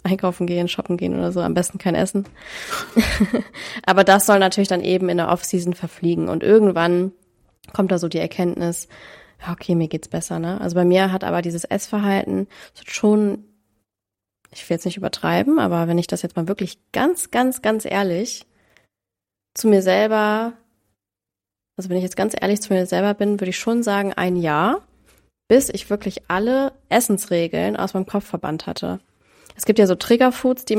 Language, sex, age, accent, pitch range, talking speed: German, female, 20-39, German, 170-200 Hz, 180 wpm